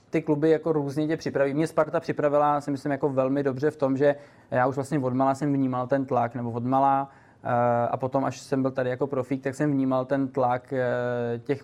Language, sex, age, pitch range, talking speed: Czech, male, 20-39, 125-140 Hz, 210 wpm